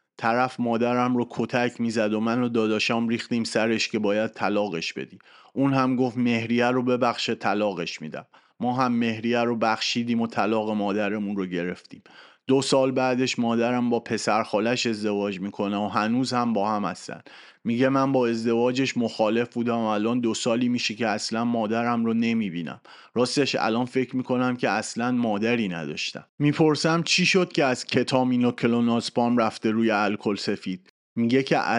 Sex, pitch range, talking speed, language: male, 110-125 Hz, 165 wpm, Persian